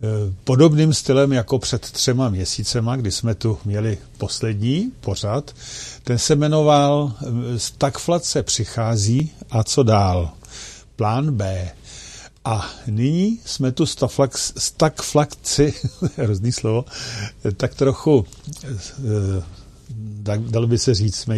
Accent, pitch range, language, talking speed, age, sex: native, 105-130 Hz, Czech, 100 wpm, 50-69, male